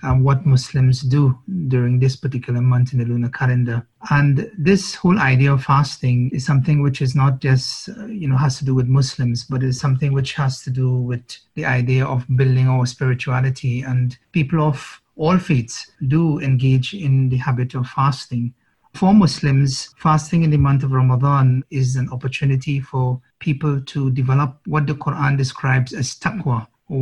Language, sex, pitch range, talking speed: English, male, 130-145 Hz, 180 wpm